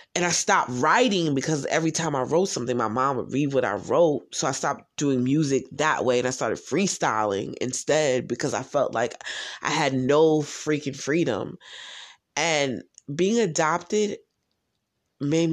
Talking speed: 160 wpm